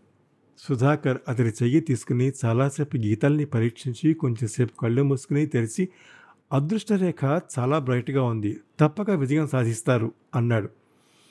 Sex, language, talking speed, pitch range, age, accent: male, Telugu, 100 wpm, 120-165 Hz, 50-69, native